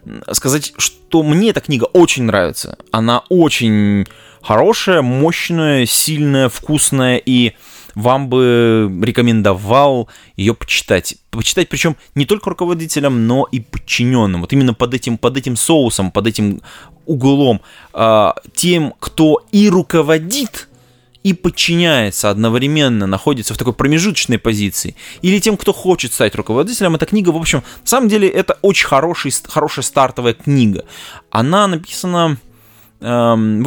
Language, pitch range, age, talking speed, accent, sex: Russian, 115-170 Hz, 20-39, 125 wpm, native, male